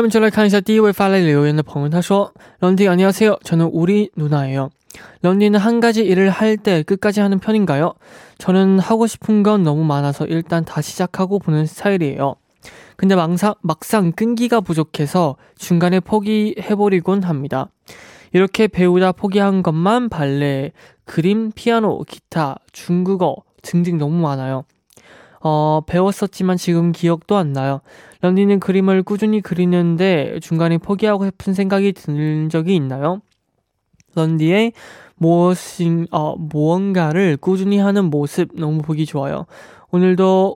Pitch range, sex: 155-200 Hz, male